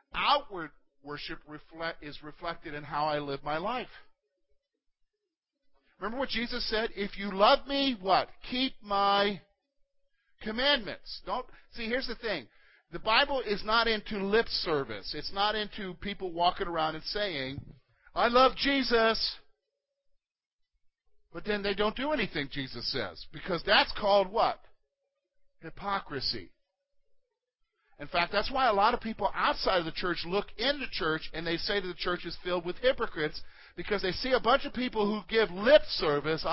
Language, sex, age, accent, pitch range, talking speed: English, male, 50-69, American, 165-250 Hz, 155 wpm